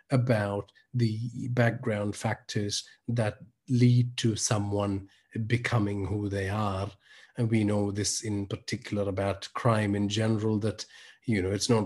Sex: male